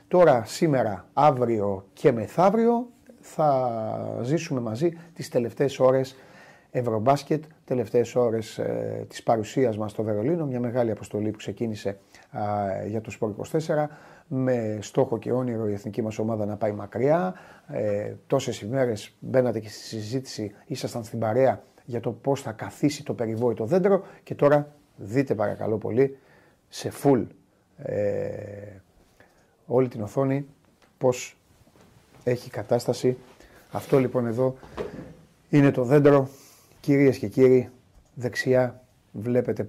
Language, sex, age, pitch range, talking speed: Greek, male, 30-49, 110-135 Hz, 125 wpm